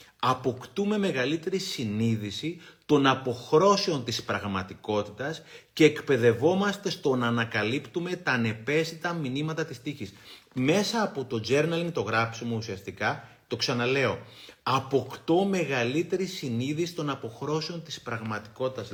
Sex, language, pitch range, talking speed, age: male, Greek, 115-160 Hz, 105 wpm, 30-49